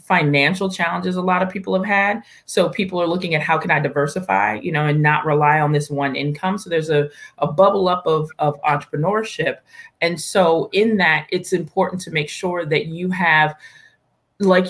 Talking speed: 195 wpm